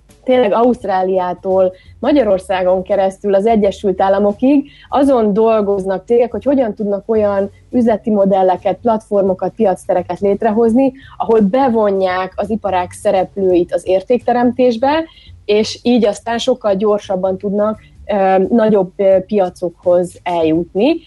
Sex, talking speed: female, 100 wpm